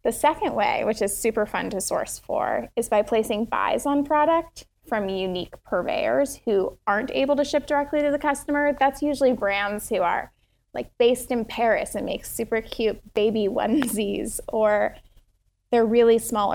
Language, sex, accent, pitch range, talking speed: English, female, American, 200-250 Hz, 170 wpm